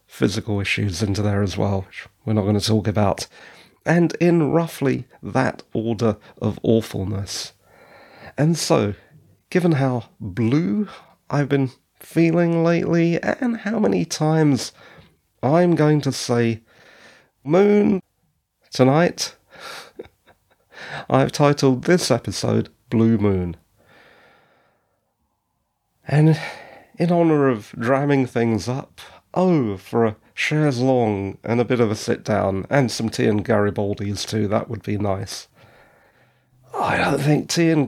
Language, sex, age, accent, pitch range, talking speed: English, male, 30-49, British, 110-150 Hz, 125 wpm